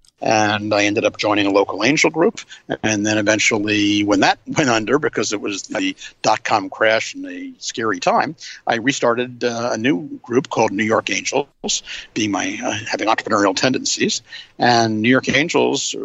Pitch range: 105-120 Hz